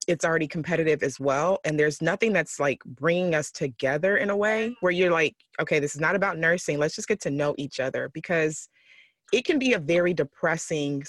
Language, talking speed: English, 210 wpm